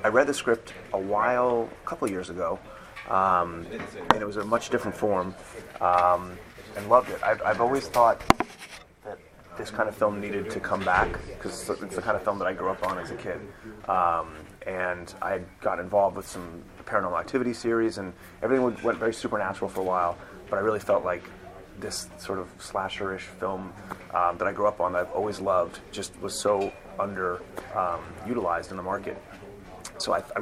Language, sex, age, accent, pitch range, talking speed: English, male, 30-49, American, 90-110 Hz, 195 wpm